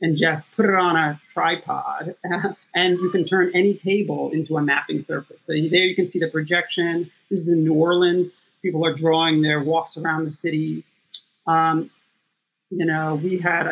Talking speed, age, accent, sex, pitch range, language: 185 wpm, 40-59, American, male, 160-185 Hz, English